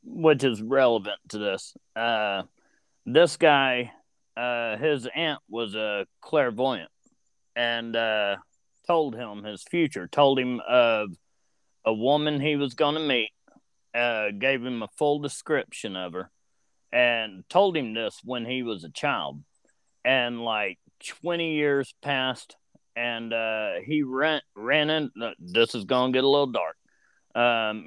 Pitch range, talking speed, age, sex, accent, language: 115-140 Hz, 140 wpm, 30-49, male, American, English